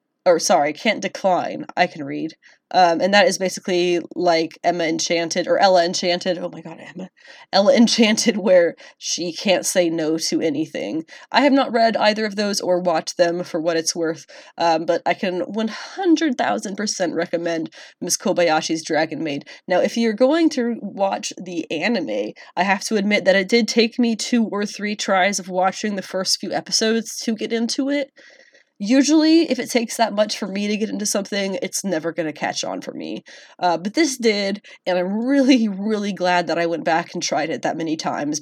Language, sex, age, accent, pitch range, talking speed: English, female, 20-39, American, 175-230 Hz, 195 wpm